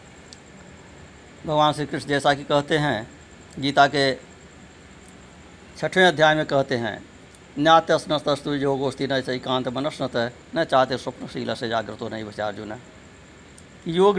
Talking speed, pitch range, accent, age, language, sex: 125 wpm, 115-165 Hz, native, 60-79, Hindi, male